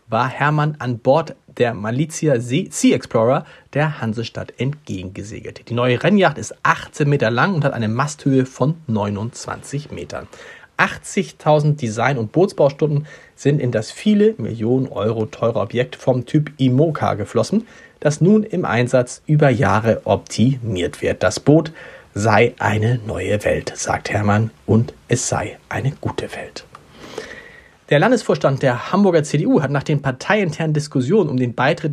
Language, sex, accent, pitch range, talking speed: German, male, German, 120-155 Hz, 145 wpm